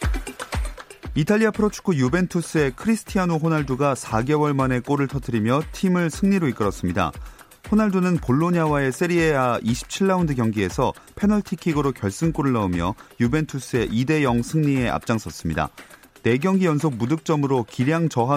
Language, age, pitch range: Korean, 30-49, 115-165 Hz